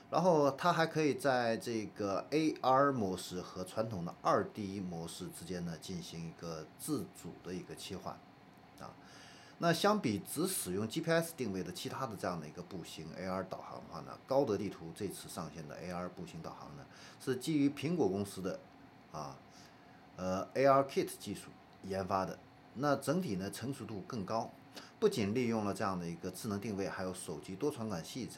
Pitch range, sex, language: 95-140 Hz, male, Chinese